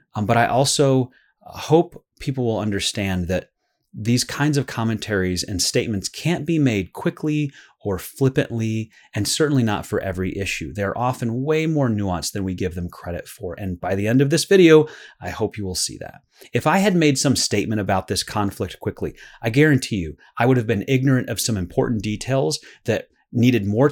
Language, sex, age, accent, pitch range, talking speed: English, male, 30-49, American, 100-140 Hz, 190 wpm